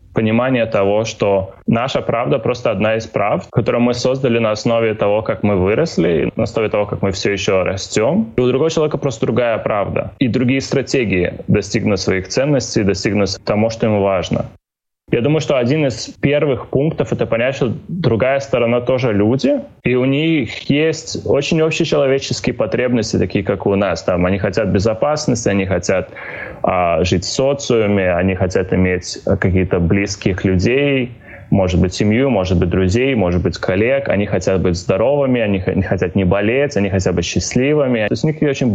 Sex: male